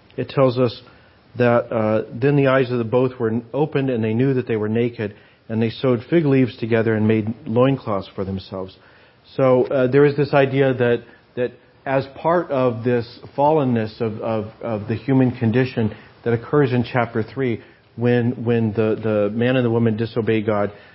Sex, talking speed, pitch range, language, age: male, 185 wpm, 110-130 Hz, English, 40-59